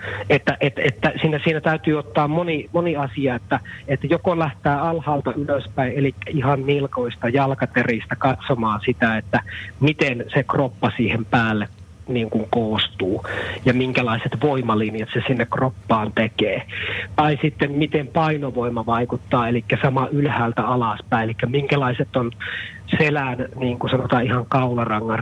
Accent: native